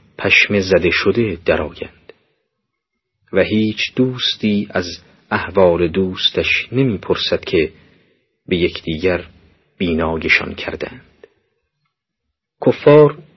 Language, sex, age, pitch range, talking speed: Persian, male, 40-59, 100-130 Hz, 75 wpm